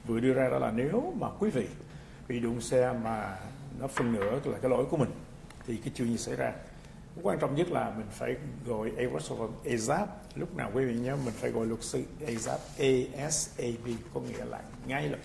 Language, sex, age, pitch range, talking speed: English, male, 60-79, 115-150 Hz, 205 wpm